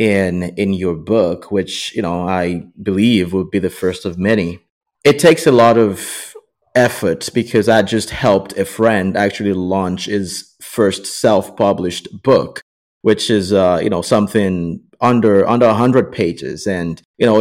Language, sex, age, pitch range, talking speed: English, male, 30-49, 95-115 Hz, 160 wpm